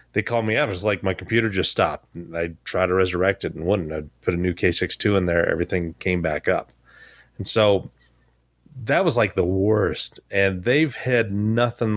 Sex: male